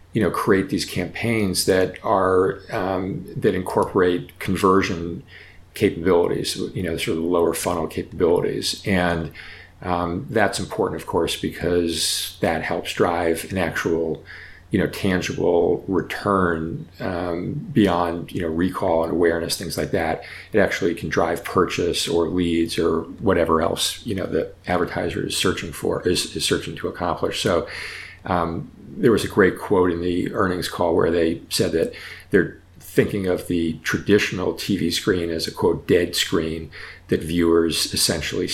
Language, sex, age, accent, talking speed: English, male, 40-59, American, 150 wpm